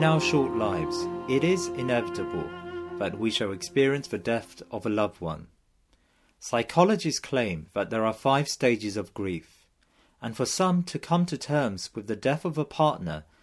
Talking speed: 175 wpm